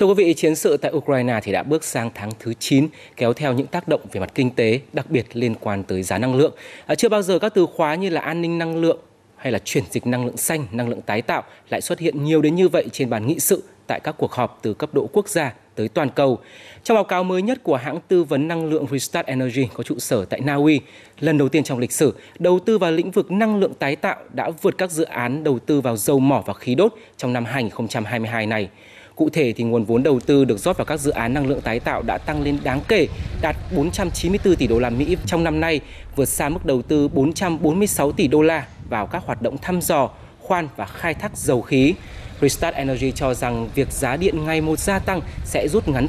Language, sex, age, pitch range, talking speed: Vietnamese, male, 20-39, 125-165 Hz, 255 wpm